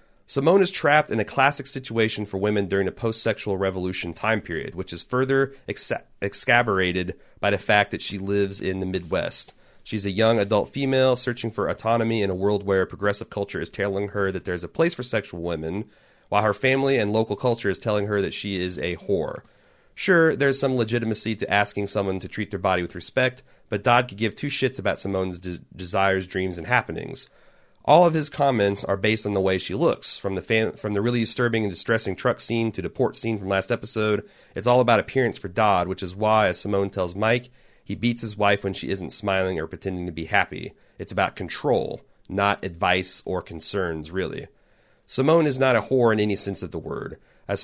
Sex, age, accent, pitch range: male, 30-49, American, 95-115 Hz